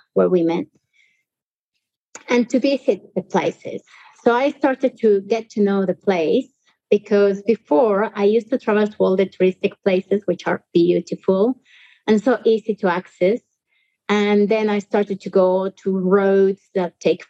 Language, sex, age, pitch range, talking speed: English, female, 30-49, 190-225 Hz, 160 wpm